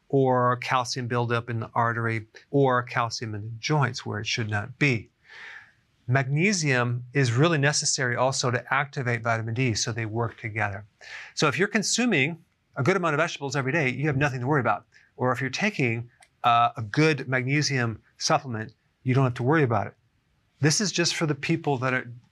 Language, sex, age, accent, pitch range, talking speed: English, male, 40-59, American, 120-145 Hz, 185 wpm